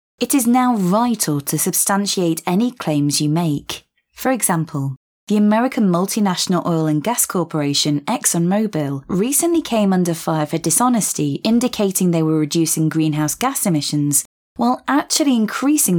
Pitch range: 155-235 Hz